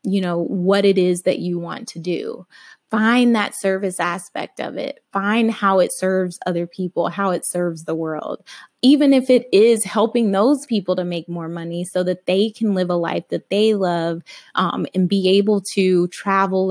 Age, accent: 20-39, American